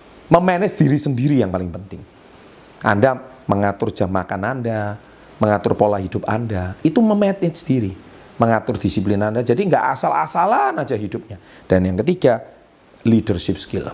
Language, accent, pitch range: Indonesian, native, 100-130 Hz